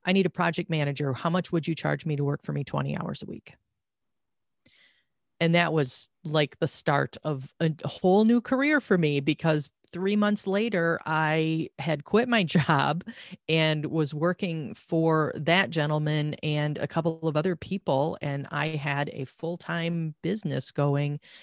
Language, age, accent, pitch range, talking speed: English, 40-59, American, 145-175 Hz, 170 wpm